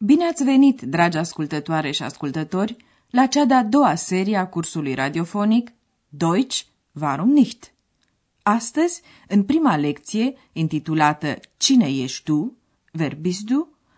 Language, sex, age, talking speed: Romanian, female, 30-49, 115 wpm